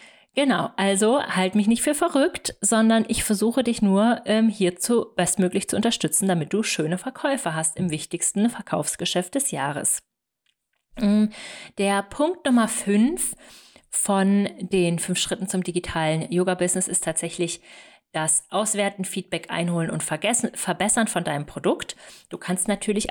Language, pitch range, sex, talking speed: German, 160-210 Hz, female, 135 wpm